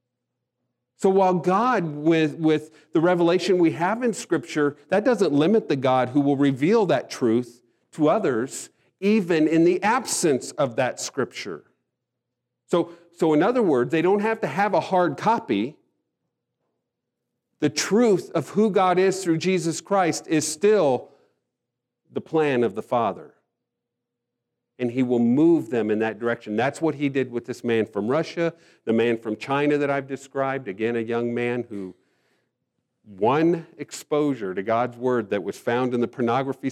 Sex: male